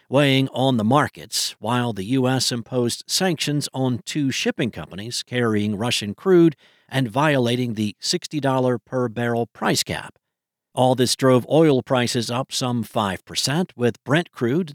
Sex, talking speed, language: male, 135 wpm, English